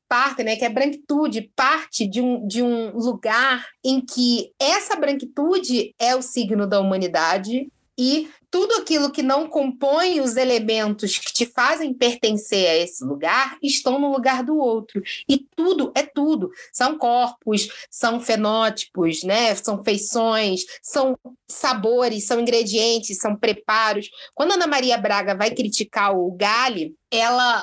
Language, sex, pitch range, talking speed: Portuguese, female, 215-280 Hz, 140 wpm